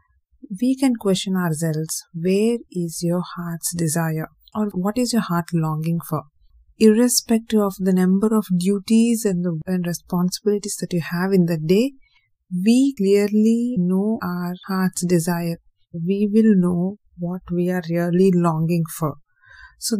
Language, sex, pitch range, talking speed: English, female, 175-210 Hz, 140 wpm